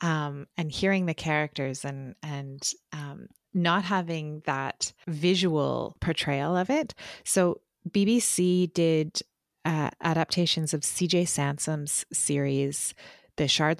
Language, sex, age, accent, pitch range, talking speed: English, female, 30-49, American, 140-165 Hz, 115 wpm